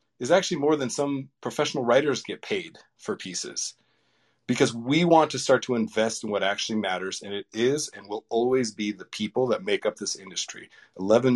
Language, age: English, 40-59